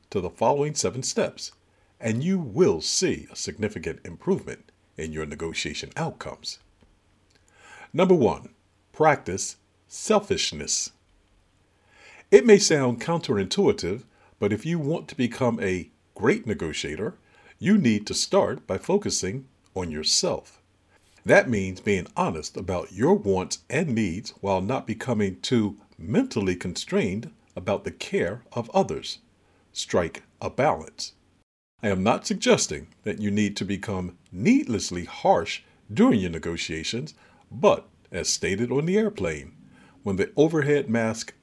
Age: 50-69